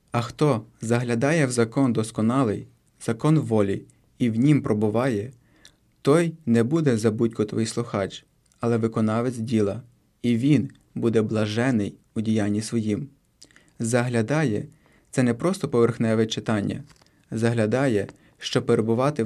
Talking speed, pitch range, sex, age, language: 120 wpm, 110-135 Hz, male, 20-39, Ukrainian